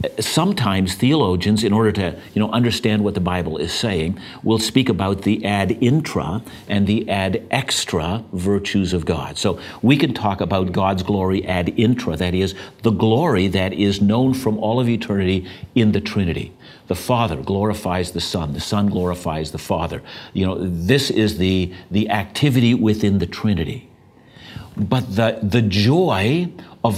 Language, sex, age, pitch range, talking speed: English, male, 60-79, 95-120 Hz, 165 wpm